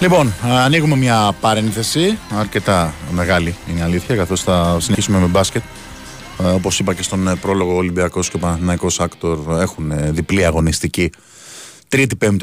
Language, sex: Greek, male